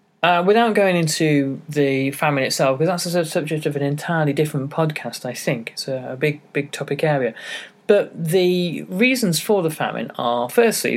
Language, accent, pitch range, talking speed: English, British, 130-160 Hz, 175 wpm